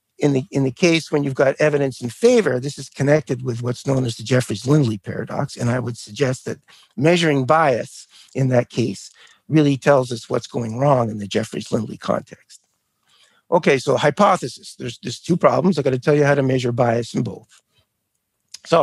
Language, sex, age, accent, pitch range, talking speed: English, male, 50-69, American, 125-160 Hz, 190 wpm